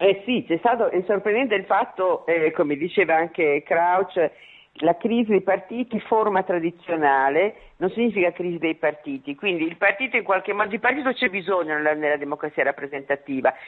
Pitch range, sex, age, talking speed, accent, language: 170-215 Hz, female, 50-69, 165 wpm, native, Italian